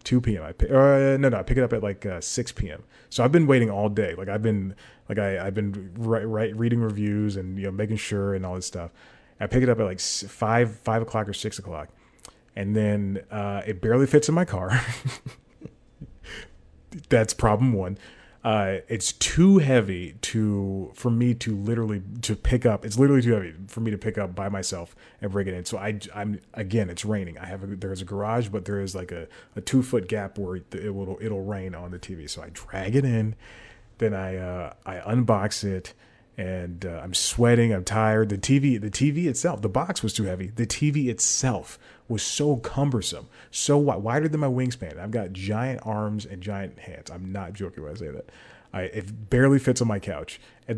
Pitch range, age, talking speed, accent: 100-120 Hz, 30-49, 215 wpm, American